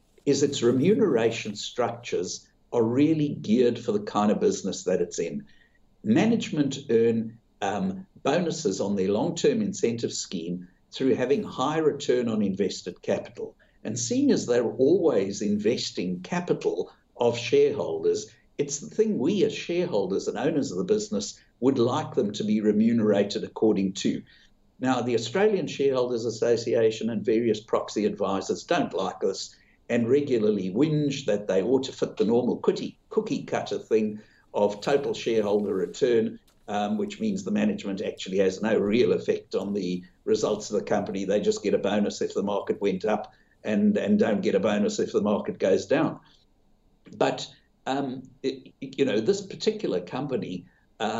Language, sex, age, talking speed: English, male, 60-79, 155 wpm